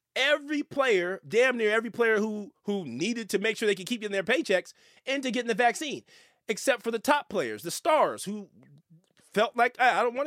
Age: 30-49